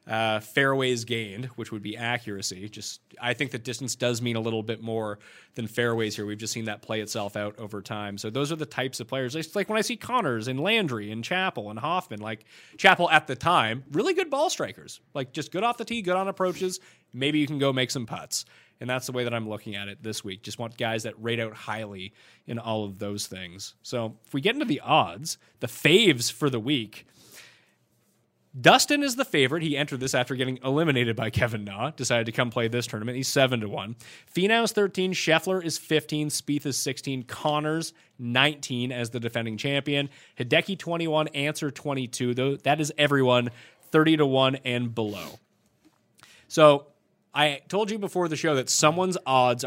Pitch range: 115-150 Hz